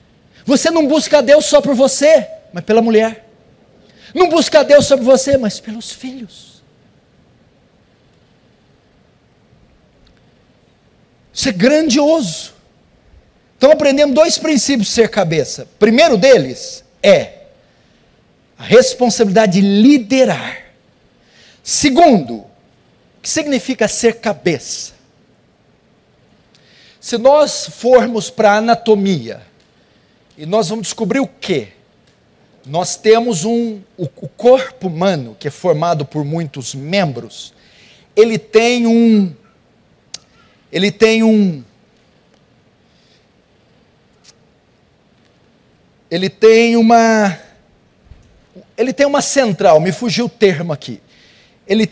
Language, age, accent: Portuguese, 50-69, Brazilian